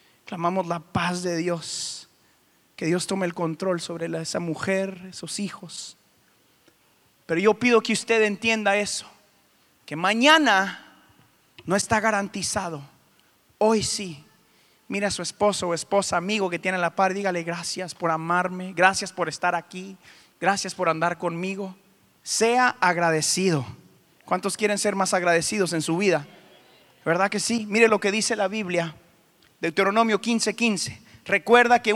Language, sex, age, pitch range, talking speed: Spanish, male, 30-49, 180-245 Hz, 145 wpm